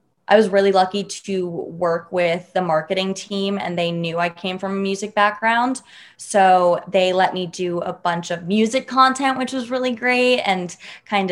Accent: American